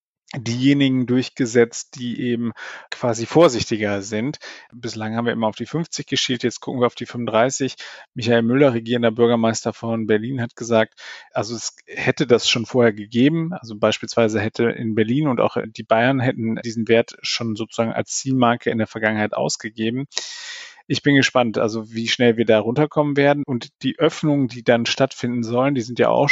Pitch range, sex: 115-130 Hz, male